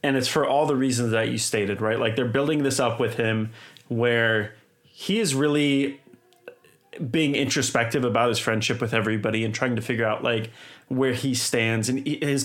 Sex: male